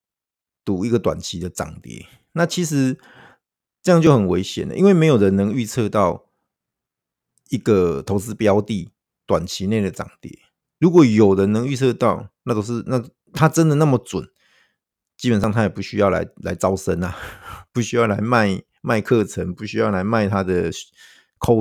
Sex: male